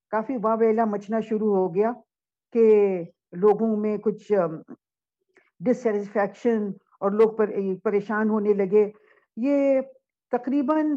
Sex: female